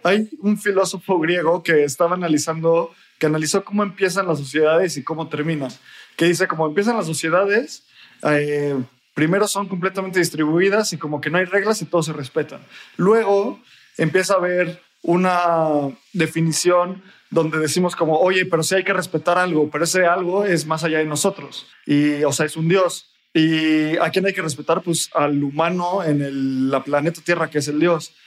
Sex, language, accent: male, Spanish, Mexican